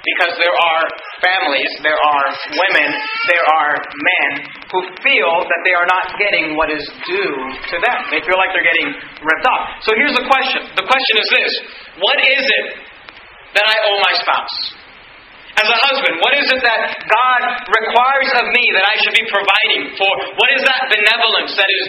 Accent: American